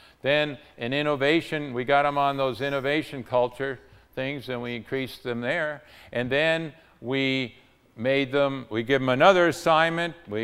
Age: 50-69